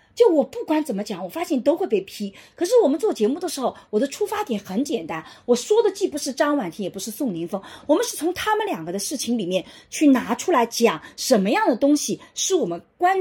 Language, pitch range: Chinese, 225-365 Hz